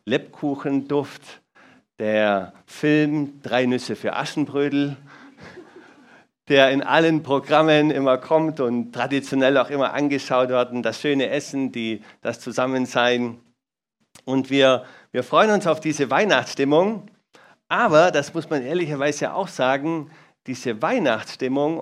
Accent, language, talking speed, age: German, German, 120 wpm, 50-69